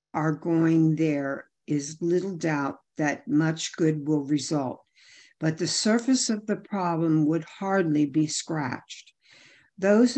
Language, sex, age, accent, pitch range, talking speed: English, female, 60-79, American, 165-220 Hz, 130 wpm